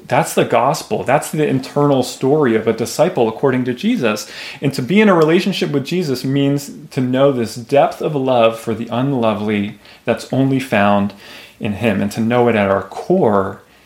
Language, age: English, 30-49